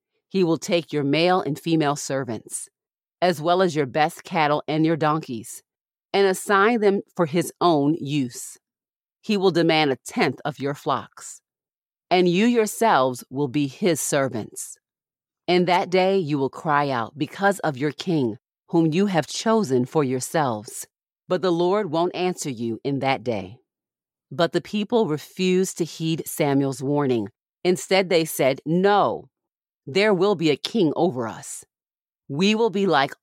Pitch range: 140-180 Hz